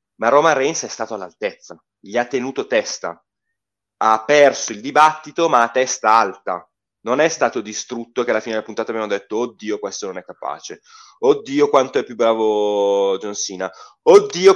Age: 30-49